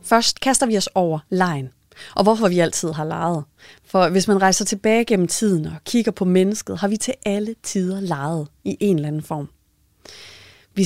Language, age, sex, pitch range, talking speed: Danish, 30-49, female, 170-210 Hz, 195 wpm